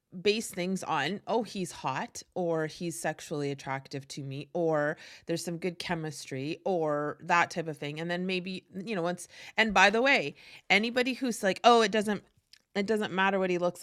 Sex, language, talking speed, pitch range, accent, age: female, English, 190 wpm, 170-225 Hz, American, 30-49